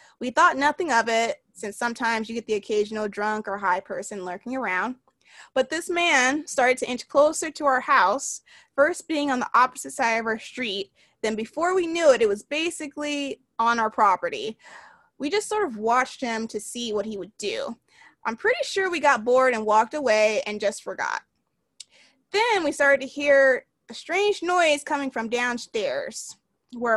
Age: 20-39